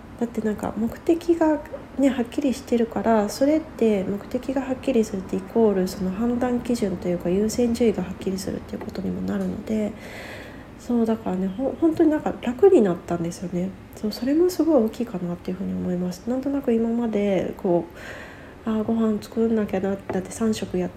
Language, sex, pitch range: Japanese, female, 180-235 Hz